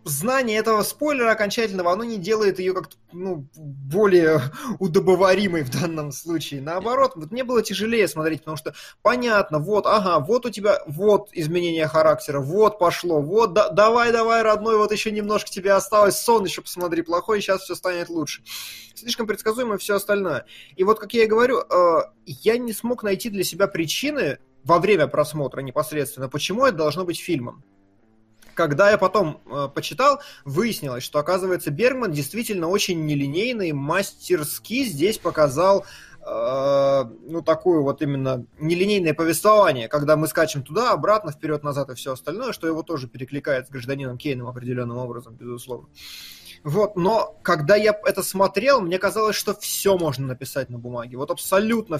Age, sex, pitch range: 20-39, male, 150-210 Hz